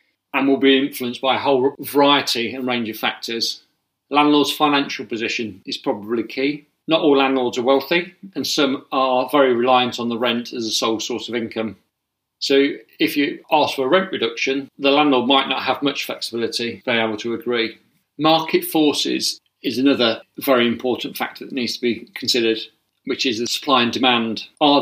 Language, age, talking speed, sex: English, 40-59, 185 wpm, male